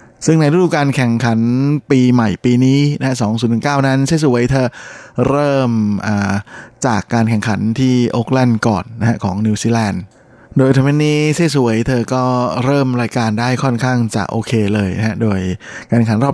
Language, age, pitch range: Thai, 20-39, 110-130 Hz